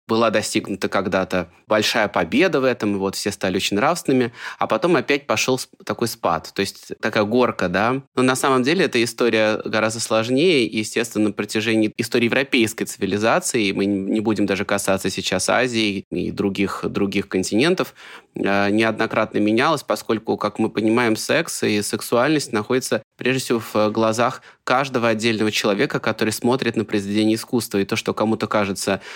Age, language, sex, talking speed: 20-39, Russian, male, 155 wpm